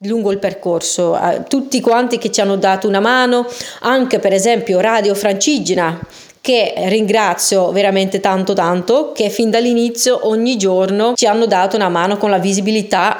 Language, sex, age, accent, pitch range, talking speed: Italian, female, 30-49, native, 190-235 Hz, 155 wpm